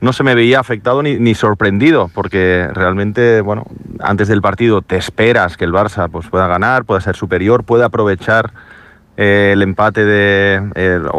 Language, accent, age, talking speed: Spanish, Spanish, 30-49, 160 wpm